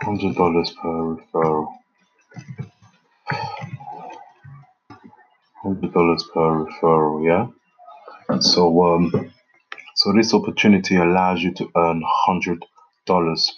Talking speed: 80 wpm